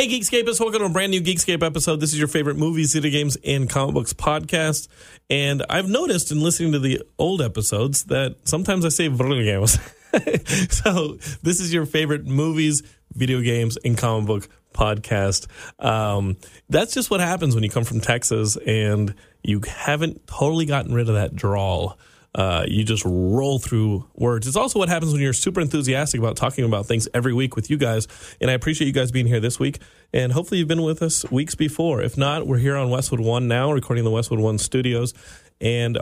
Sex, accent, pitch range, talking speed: male, American, 115-155 Hz, 200 wpm